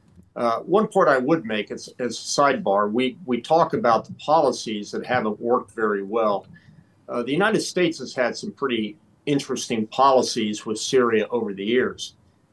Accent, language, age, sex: American, English, 50-69, male